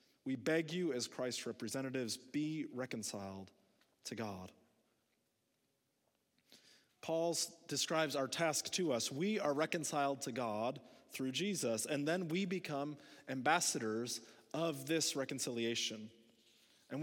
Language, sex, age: English, male, 30-49